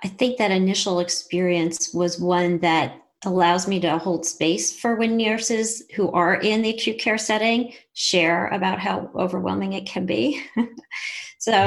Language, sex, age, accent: English, female, 40-59, American